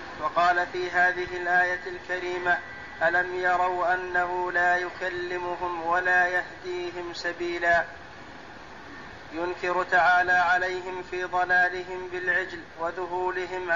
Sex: male